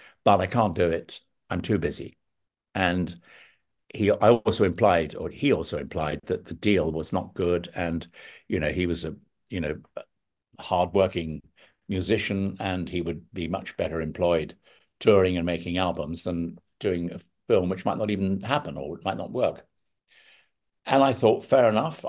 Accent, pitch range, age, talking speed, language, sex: British, 85-110 Hz, 60-79, 170 wpm, English, male